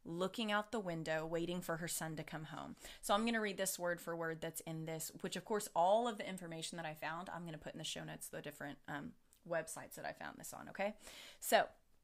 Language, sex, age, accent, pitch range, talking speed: English, female, 20-39, American, 165-200 Hz, 260 wpm